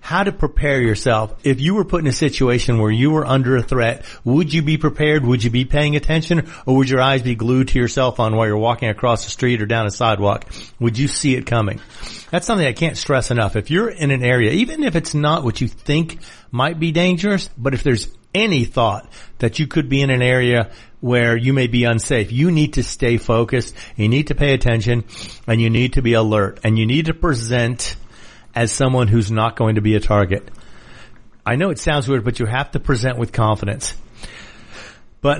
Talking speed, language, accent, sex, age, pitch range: 225 wpm, English, American, male, 40-59, 115-150 Hz